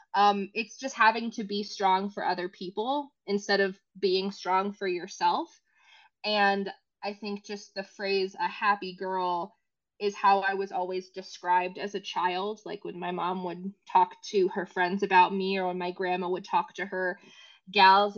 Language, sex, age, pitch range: English, female, 20-39, 185-215 Hz